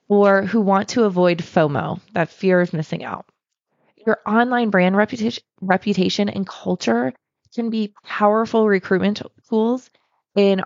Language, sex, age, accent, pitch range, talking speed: English, female, 20-39, American, 175-220 Hz, 130 wpm